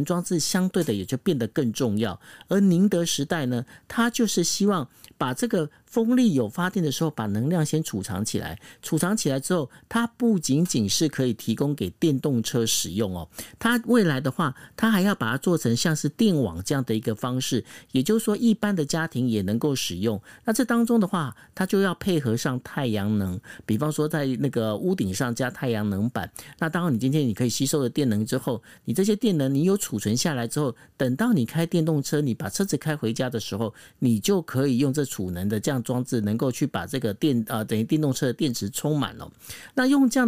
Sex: male